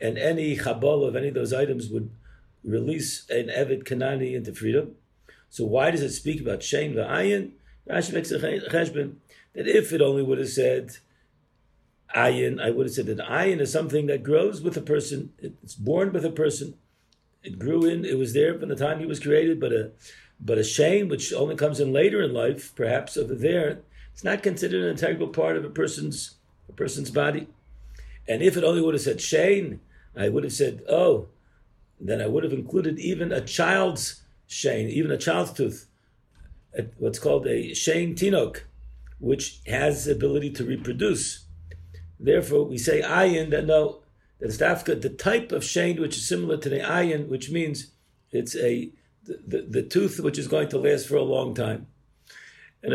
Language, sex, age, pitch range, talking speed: English, male, 50-69, 130-170 Hz, 180 wpm